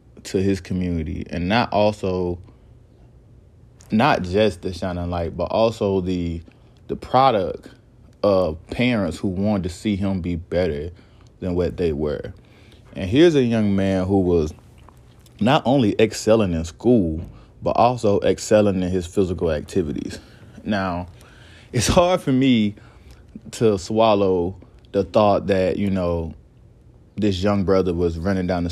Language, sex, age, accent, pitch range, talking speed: English, male, 20-39, American, 90-110 Hz, 140 wpm